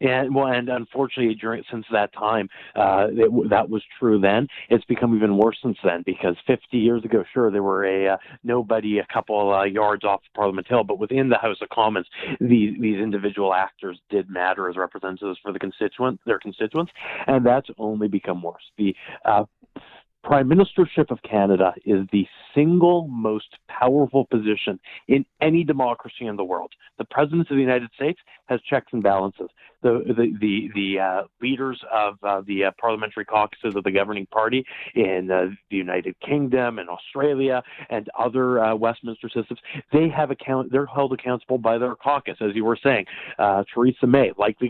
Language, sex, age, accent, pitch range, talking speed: English, male, 40-59, American, 100-130 Hz, 180 wpm